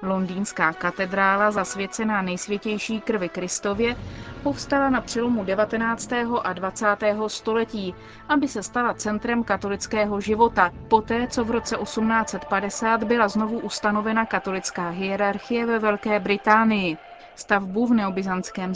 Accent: native